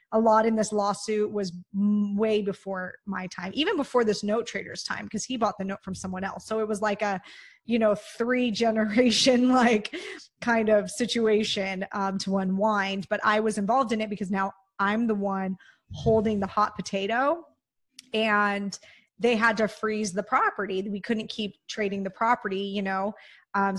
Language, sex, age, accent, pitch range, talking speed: English, female, 20-39, American, 200-235 Hz, 180 wpm